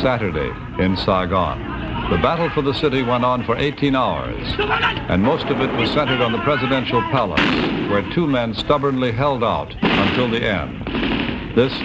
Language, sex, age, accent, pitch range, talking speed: English, male, 60-79, American, 100-125 Hz, 165 wpm